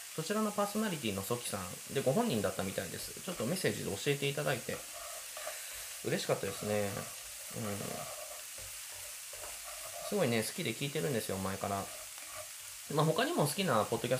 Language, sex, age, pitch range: Japanese, male, 20-39, 105-175 Hz